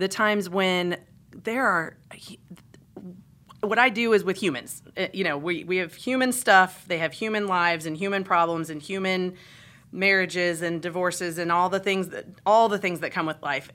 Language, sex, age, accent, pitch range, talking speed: English, female, 30-49, American, 175-220 Hz, 185 wpm